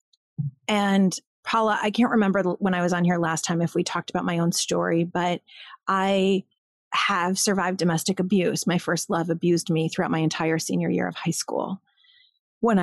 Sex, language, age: female, English, 30-49